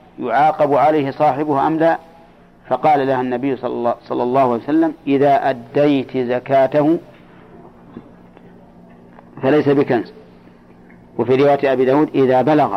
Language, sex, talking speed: Arabic, male, 115 wpm